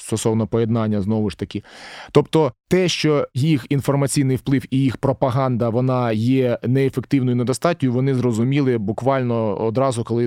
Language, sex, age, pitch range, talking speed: Ukrainian, male, 20-39, 115-135 Hz, 135 wpm